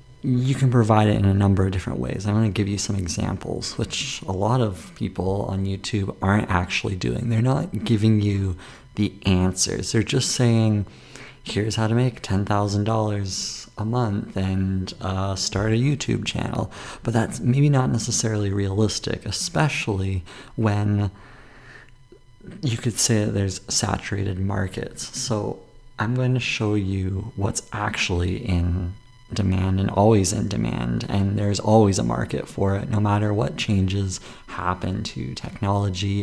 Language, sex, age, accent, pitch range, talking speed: English, male, 30-49, American, 95-120 Hz, 155 wpm